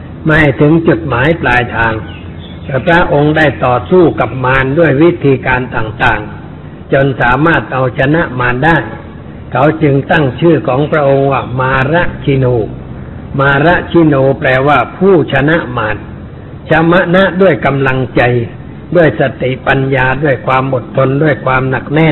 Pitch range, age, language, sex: 125-155 Hz, 60-79, Thai, male